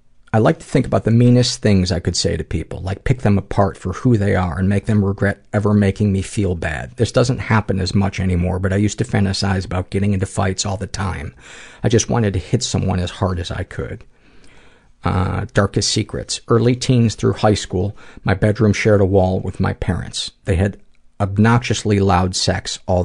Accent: American